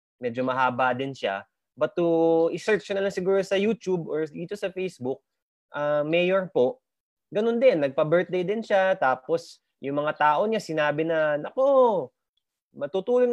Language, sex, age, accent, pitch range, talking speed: English, male, 20-39, Filipino, 140-215 Hz, 155 wpm